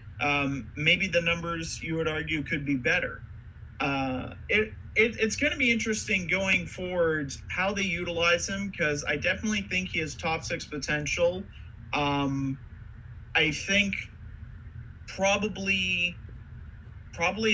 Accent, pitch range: American, 115-170 Hz